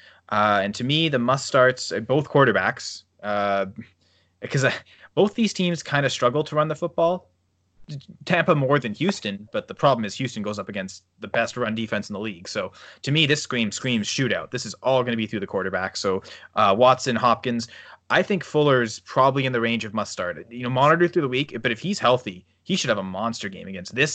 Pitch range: 105-135 Hz